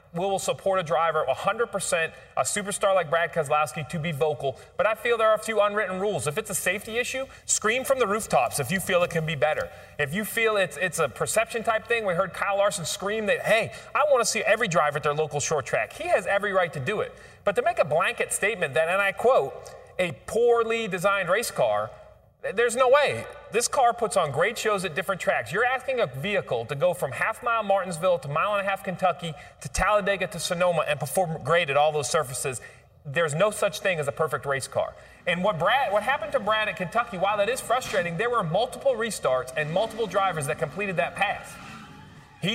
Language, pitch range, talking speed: English, 155-210 Hz, 225 wpm